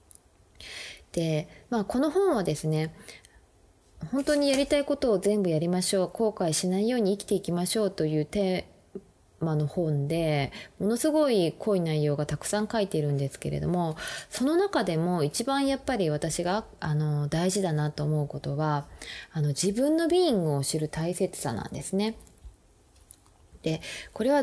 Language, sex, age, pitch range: Japanese, female, 20-39, 150-220 Hz